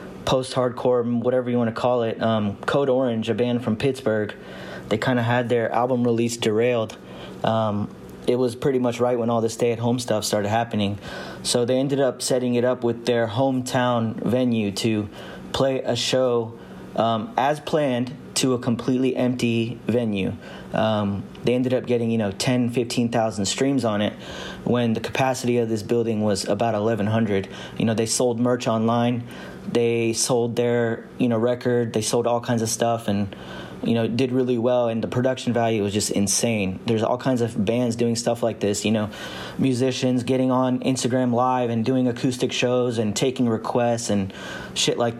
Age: 30-49